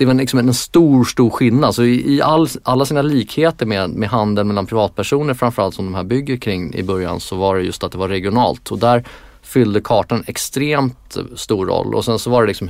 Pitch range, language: 100-130 Hz, Swedish